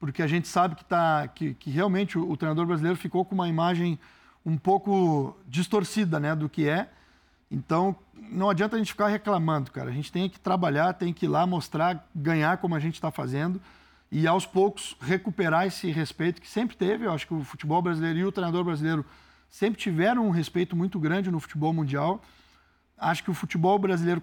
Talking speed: 200 wpm